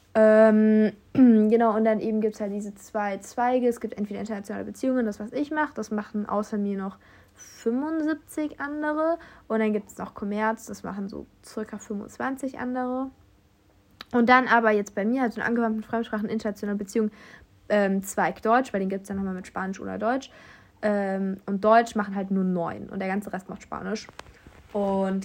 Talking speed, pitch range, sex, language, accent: 185 wpm, 195-230 Hz, female, German, German